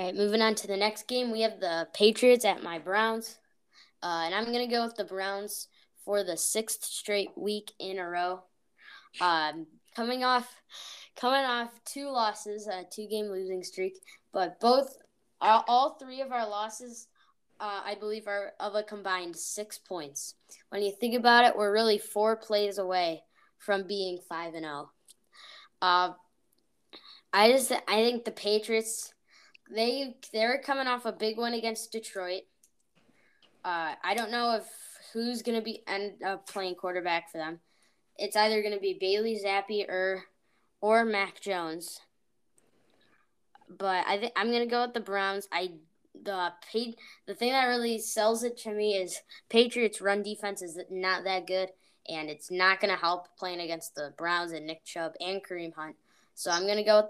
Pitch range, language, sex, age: 185-225 Hz, English, female, 10-29